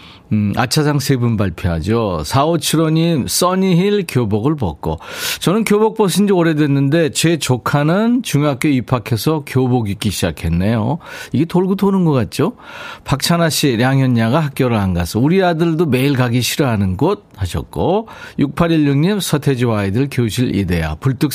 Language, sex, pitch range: Korean, male, 110-170 Hz